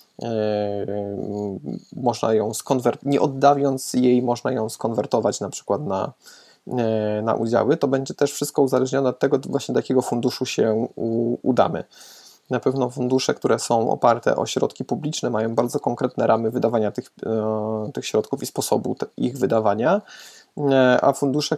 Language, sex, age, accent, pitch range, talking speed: Polish, male, 20-39, native, 110-135 Hz, 155 wpm